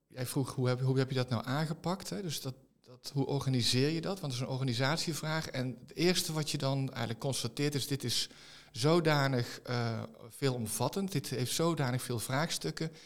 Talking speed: 200 wpm